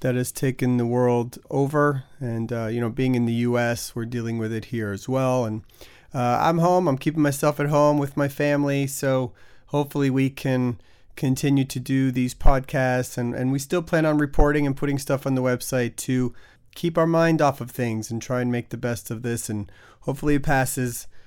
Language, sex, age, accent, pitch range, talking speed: English, male, 30-49, American, 120-140 Hz, 210 wpm